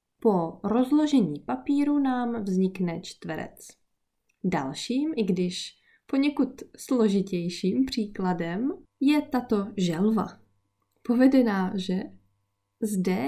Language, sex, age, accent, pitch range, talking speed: Czech, female, 20-39, native, 170-255 Hz, 80 wpm